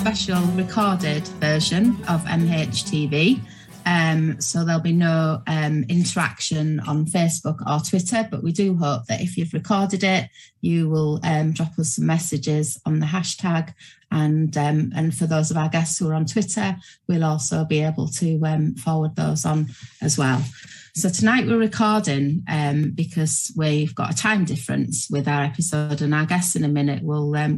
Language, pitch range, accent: English, 150-170 Hz, British